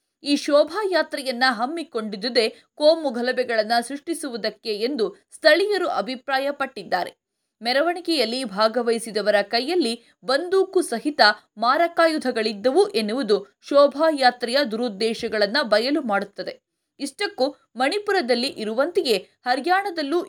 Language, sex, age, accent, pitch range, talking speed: Kannada, female, 20-39, native, 230-330 Hz, 70 wpm